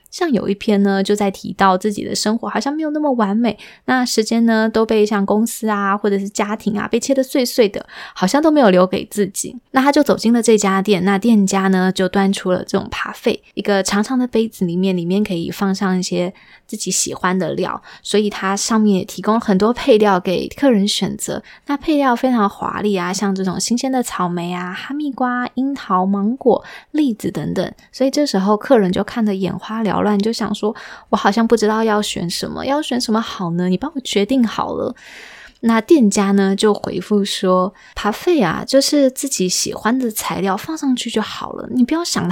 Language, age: Chinese, 20-39